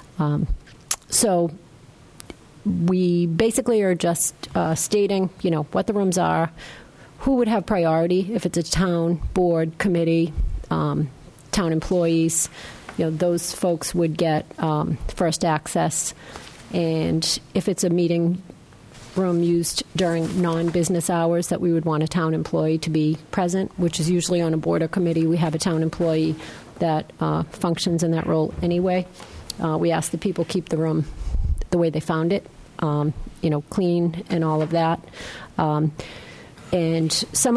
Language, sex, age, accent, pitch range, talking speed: English, female, 40-59, American, 160-185 Hz, 160 wpm